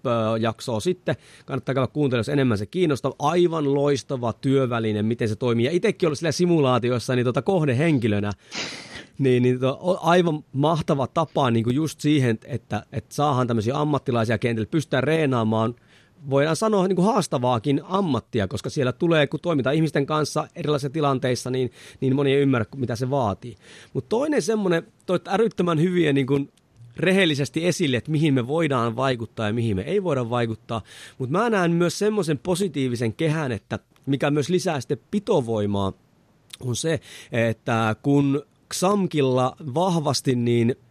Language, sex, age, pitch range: Finnish, male, 30-49, 125-165 Hz